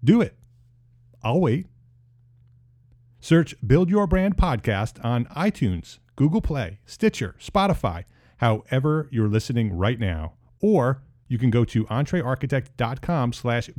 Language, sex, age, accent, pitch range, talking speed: English, male, 40-59, American, 115-145 Hz, 115 wpm